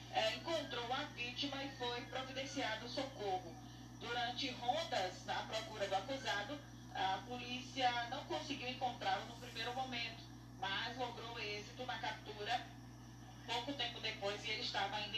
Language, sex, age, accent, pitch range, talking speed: Portuguese, female, 20-39, Brazilian, 185-250 Hz, 135 wpm